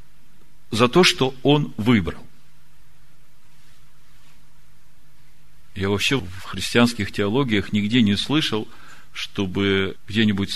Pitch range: 100-130 Hz